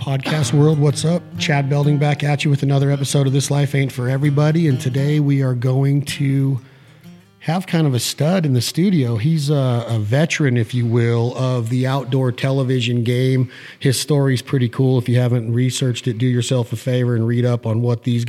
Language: English